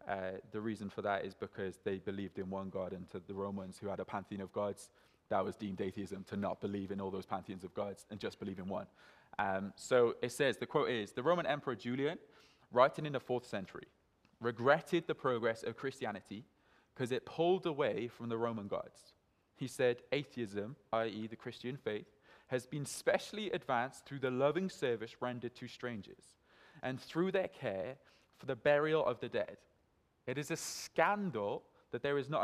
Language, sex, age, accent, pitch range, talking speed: English, male, 20-39, British, 115-150 Hz, 195 wpm